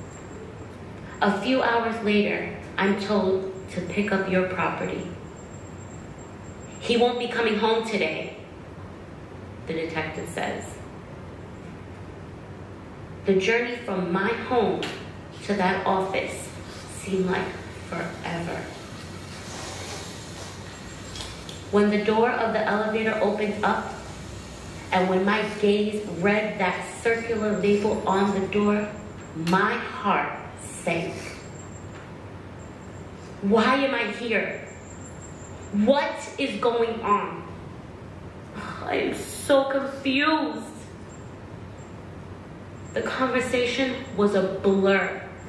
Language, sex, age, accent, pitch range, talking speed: English, female, 30-49, American, 175-225 Hz, 90 wpm